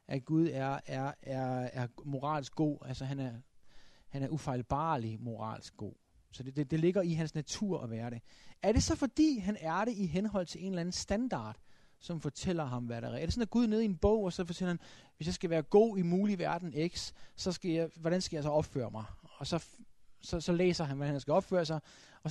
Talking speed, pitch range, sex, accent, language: 240 wpm, 145-200 Hz, male, native, Danish